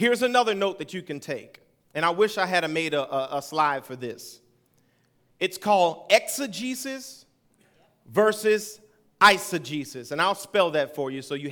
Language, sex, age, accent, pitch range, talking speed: English, male, 40-59, American, 140-215 Hz, 170 wpm